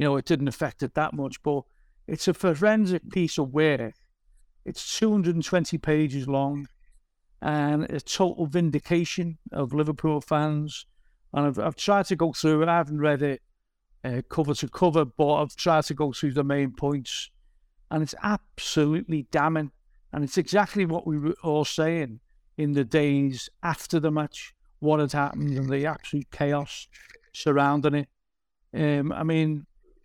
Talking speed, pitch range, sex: 160 wpm, 145-170 Hz, male